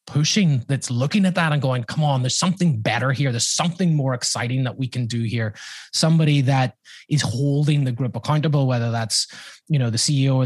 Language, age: English, 20-39